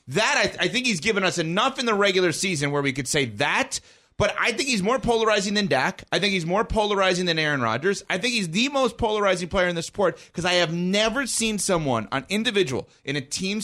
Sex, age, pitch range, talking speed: male, 30-49, 145-195 Hz, 240 wpm